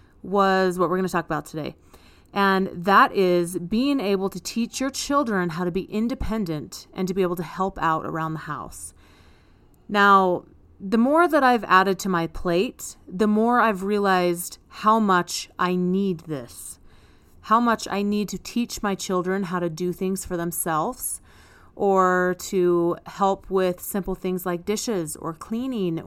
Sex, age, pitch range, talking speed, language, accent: female, 30-49, 175-210 Hz, 170 wpm, English, American